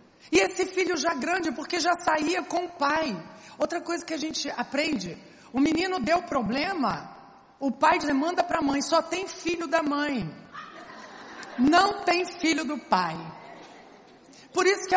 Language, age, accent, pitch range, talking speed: Portuguese, 50-69, Brazilian, 260-350 Hz, 160 wpm